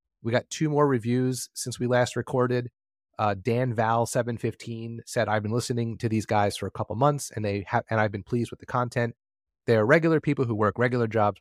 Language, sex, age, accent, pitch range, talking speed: English, male, 30-49, American, 100-125 Hz, 210 wpm